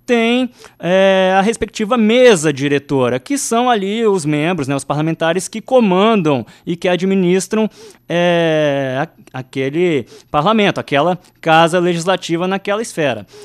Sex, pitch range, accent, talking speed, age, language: male, 155-210 Hz, Brazilian, 110 wpm, 20-39, Portuguese